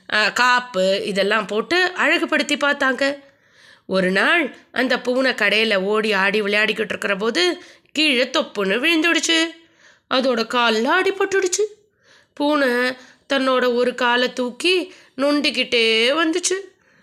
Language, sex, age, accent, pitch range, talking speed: Tamil, female, 20-39, native, 205-295 Hz, 95 wpm